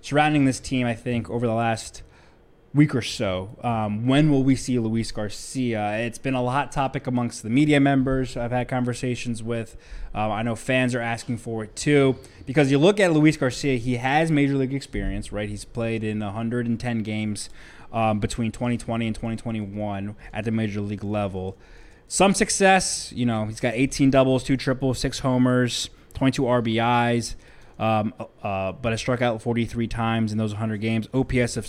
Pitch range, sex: 115-135 Hz, male